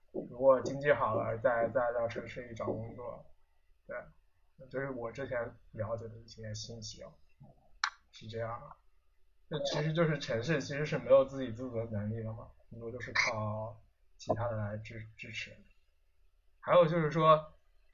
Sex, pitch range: male, 110-145 Hz